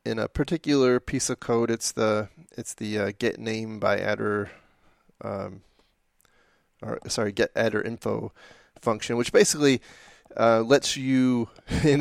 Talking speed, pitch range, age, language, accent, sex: 140 wpm, 110-125 Hz, 20-39, English, American, male